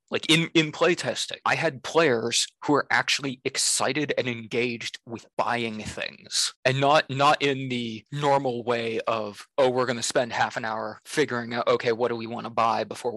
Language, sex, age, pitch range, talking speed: English, male, 20-39, 120-140 Hz, 190 wpm